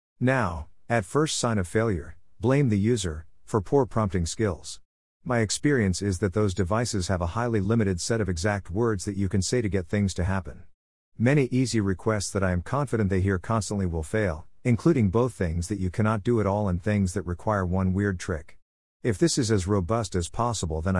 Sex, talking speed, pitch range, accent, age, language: male, 205 wpm, 90-115 Hz, American, 50-69, English